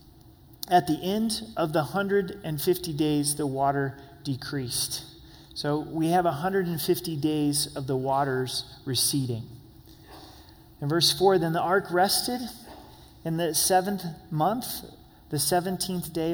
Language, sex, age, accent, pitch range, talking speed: English, male, 30-49, American, 135-160 Hz, 120 wpm